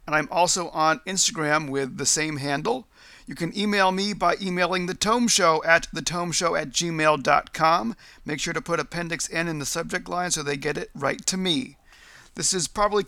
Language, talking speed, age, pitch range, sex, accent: English, 185 wpm, 40-59, 165-195 Hz, male, American